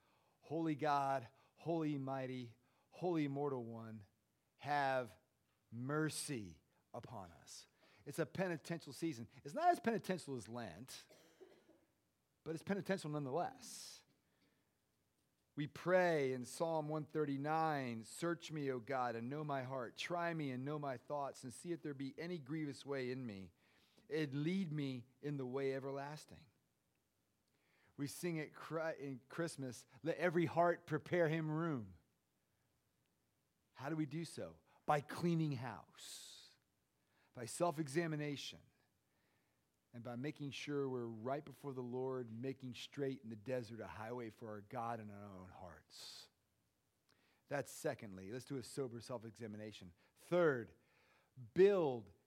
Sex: male